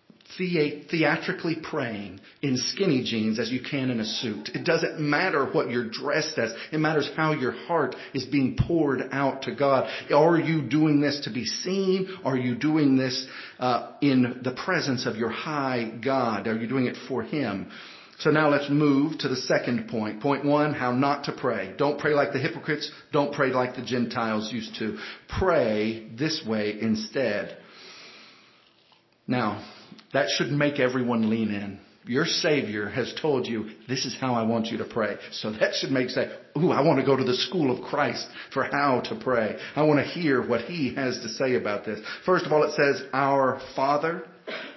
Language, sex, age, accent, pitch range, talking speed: English, male, 40-59, American, 125-150 Hz, 190 wpm